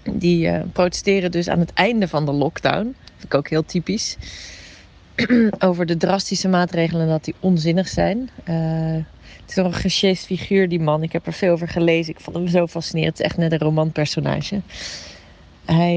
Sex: female